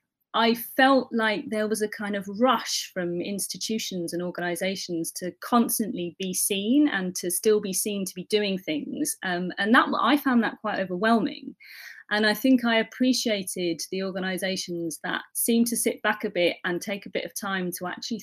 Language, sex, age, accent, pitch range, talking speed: English, female, 30-49, British, 175-220 Hz, 185 wpm